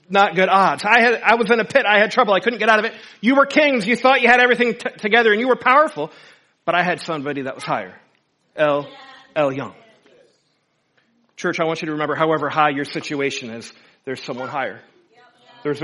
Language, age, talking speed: English, 40-59, 215 wpm